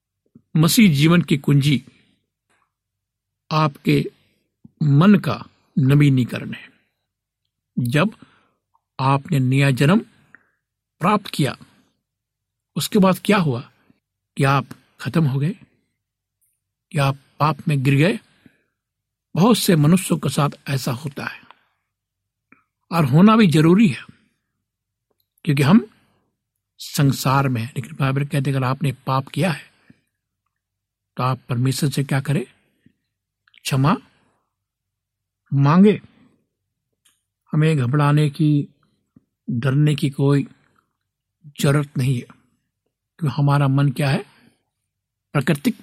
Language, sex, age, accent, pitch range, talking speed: Hindi, male, 60-79, native, 120-155 Hz, 100 wpm